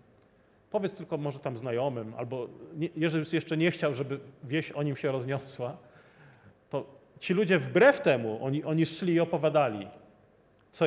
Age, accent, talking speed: 40-59, native, 150 wpm